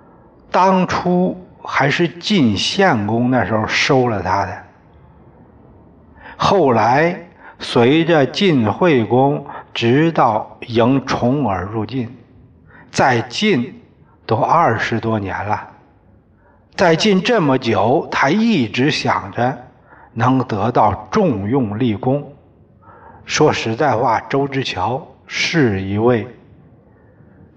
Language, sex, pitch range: Chinese, male, 110-150 Hz